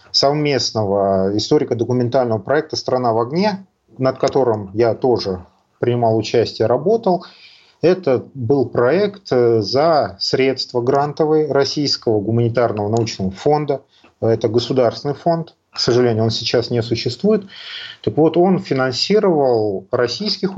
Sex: male